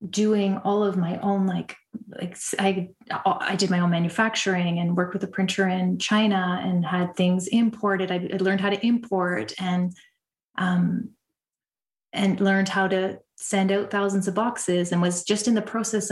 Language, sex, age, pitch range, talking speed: English, female, 30-49, 185-210 Hz, 175 wpm